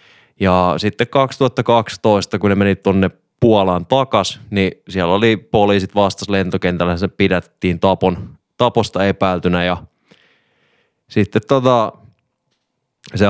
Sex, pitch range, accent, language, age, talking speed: male, 95-110 Hz, native, Finnish, 20-39, 115 wpm